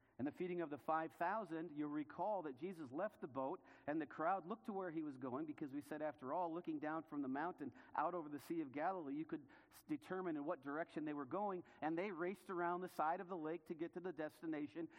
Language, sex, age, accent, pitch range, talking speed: English, male, 50-69, American, 125-175 Hz, 245 wpm